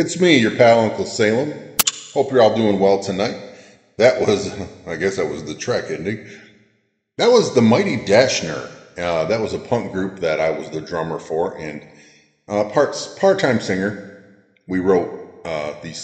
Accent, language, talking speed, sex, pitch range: American, English, 170 wpm, male, 80-110 Hz